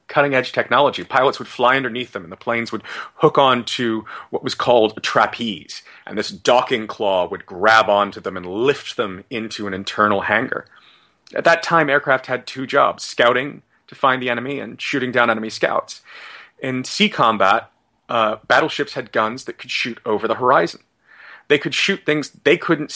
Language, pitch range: English, 115-145 Hz